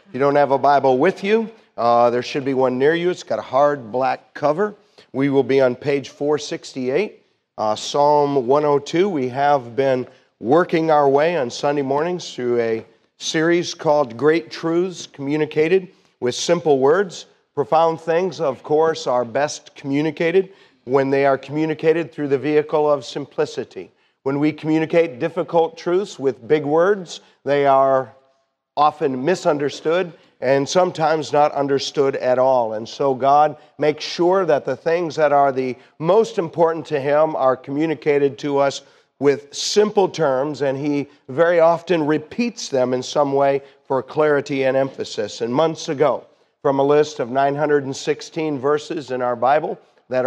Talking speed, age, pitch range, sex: 155 wpm, 50-69, 135-160 Hz, male